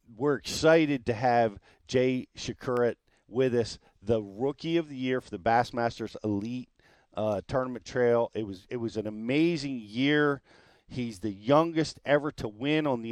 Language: English